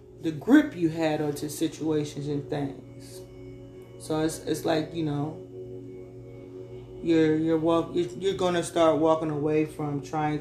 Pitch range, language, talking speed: 125-175 Hz, English, 150 wpm